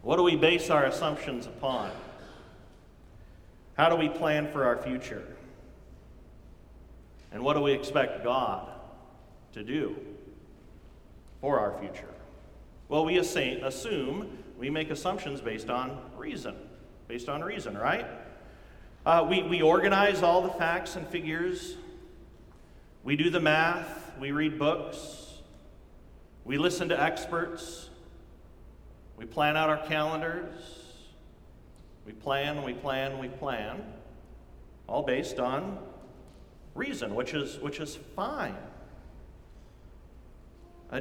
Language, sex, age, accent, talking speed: English, male, 40-59, American, 115 wpm